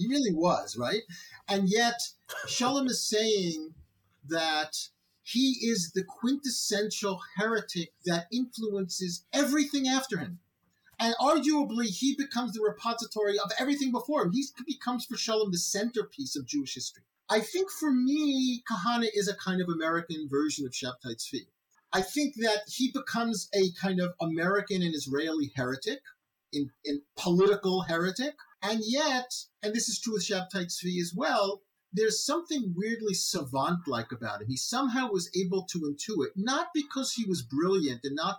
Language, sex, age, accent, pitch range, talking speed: English, male, 50-69, American, 160-230 Hz, 155 wpm